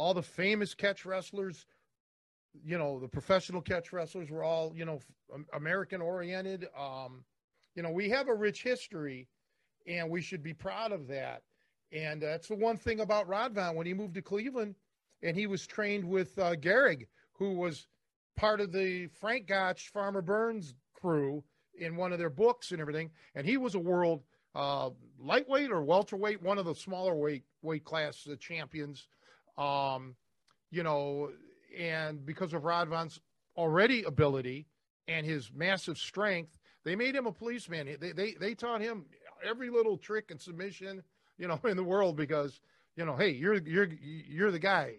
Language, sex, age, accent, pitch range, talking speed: English, male, 40-59, American, 150-200 Hz, 170 wpm